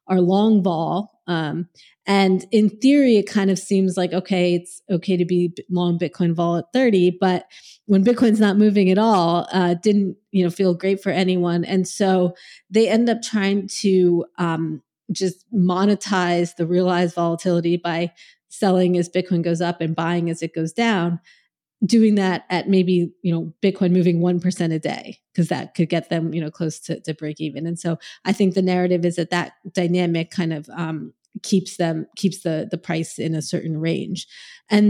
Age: 30-49